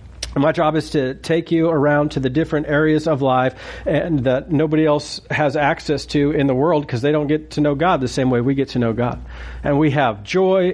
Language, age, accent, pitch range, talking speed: English, 40-59, American, 135-185 Hz, 235 wpm